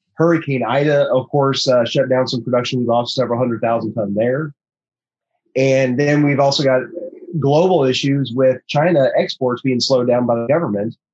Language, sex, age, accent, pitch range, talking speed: English, male, 30-49, American, 120-150 Hz, 170 wpm